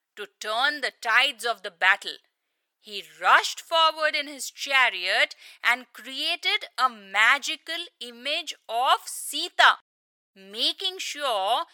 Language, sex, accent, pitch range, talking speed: English, female, Indian, 225-325 Hz, 110 wpm